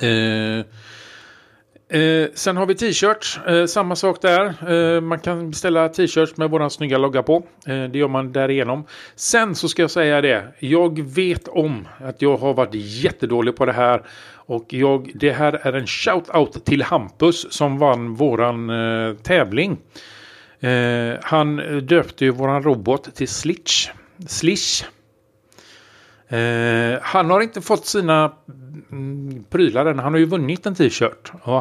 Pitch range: 120-160 Hz